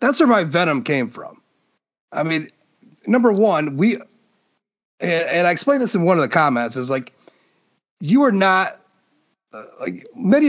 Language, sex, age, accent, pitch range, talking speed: English, male, 30-49, American, 155-210 Hz, 165 wpm